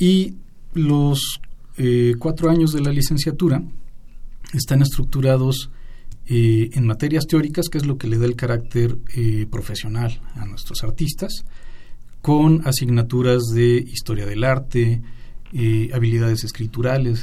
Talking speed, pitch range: 125 wpm, 115-135 Hz